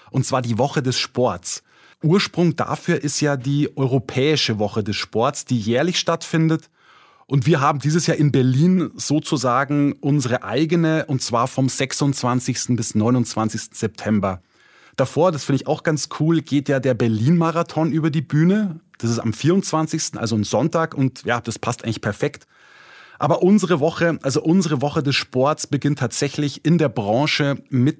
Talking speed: 165 wpm